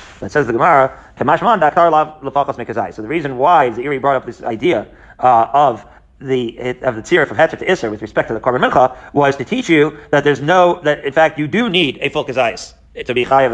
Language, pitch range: English, 130-175 Hz